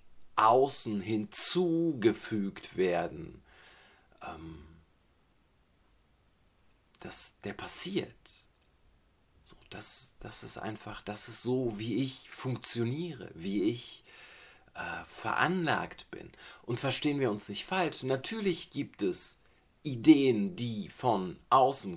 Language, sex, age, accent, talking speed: German, male, 40-59, German, 95 wpm